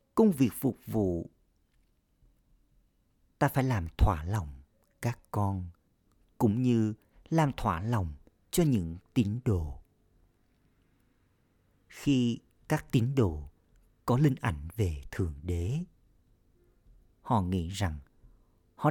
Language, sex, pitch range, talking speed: Vietnamese, male, 90-115 Hz, 110 wpm